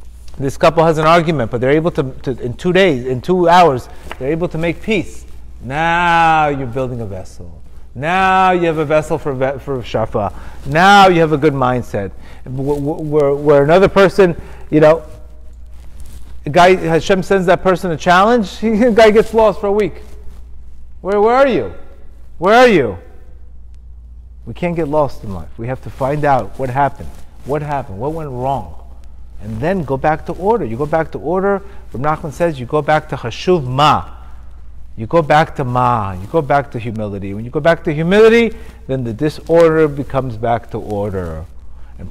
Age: 30-49